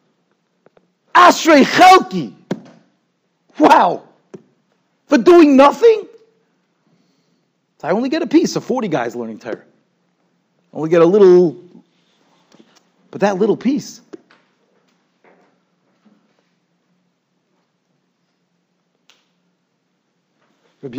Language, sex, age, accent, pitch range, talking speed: English, male, 50-69, American, 160-250 Hz, 65 wpm